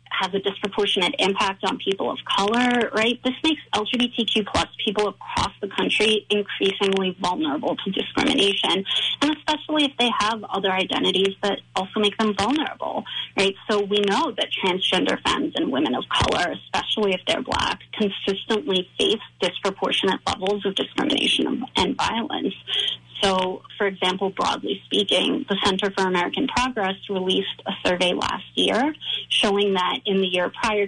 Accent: American